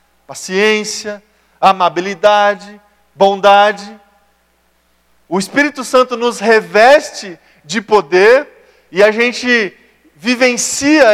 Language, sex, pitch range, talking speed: Portuguese, male, 200-250 Hz, 75 wpm